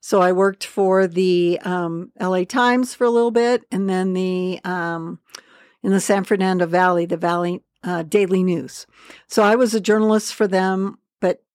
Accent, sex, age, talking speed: American, female, 60-79, 175 wpm